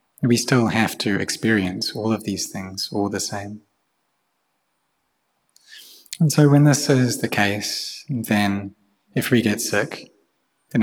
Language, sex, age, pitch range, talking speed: English, male, 20-39, 100-120 Hz, 140 wpm